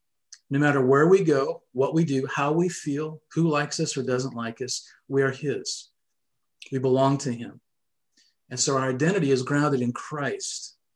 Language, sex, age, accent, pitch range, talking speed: English, male, 50-69, American, 125-150 Hz, 180 wpm